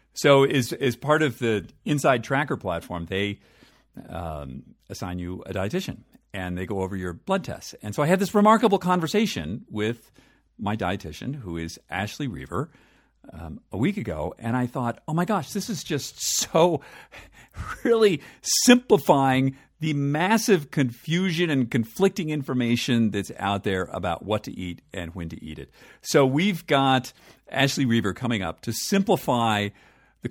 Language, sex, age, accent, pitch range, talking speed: English, male, 50-69, American, 105-155 Hz, 160 wpm